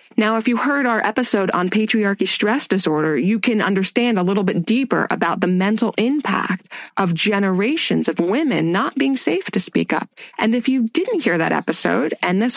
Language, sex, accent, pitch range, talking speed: English, female, American, 185-250 Hz, 190 wpm